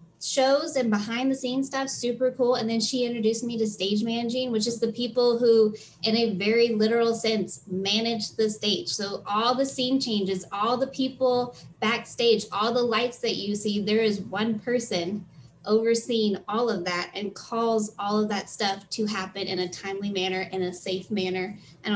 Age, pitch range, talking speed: 10-29, 200-245 Hz, 190 wpm